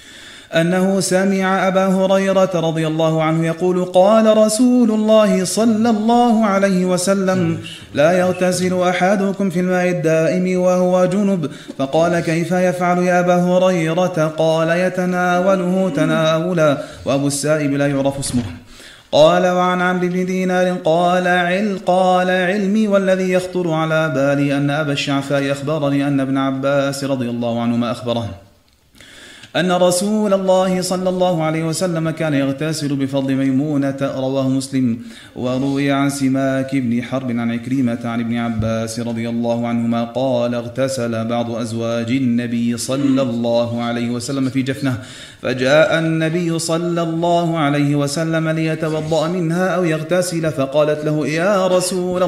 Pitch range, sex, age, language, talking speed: 135-180 Hz, male, 30-49, Arabic, 130 wpm